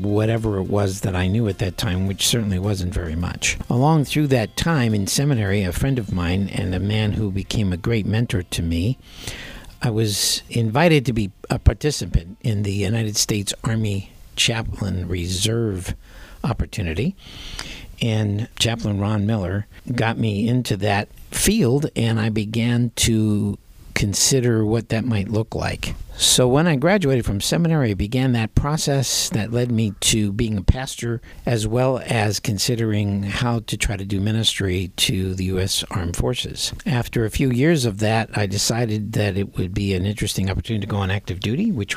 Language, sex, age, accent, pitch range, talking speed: English, male, 60-79, American, 100-120 Hz, 175 wpm